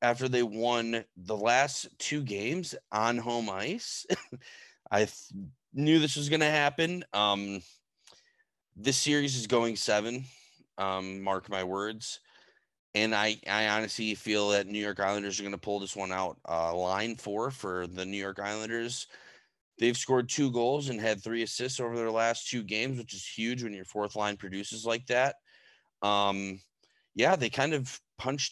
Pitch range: 100-120 Hz